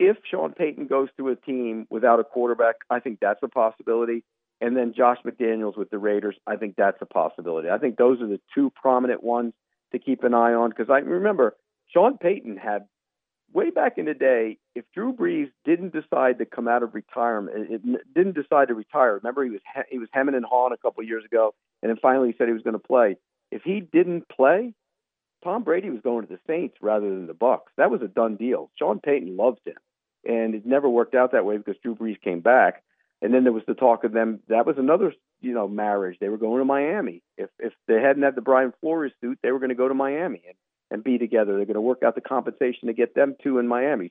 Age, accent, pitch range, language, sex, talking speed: 50-69, American, 115-140 Hz, English, male, 240 wpm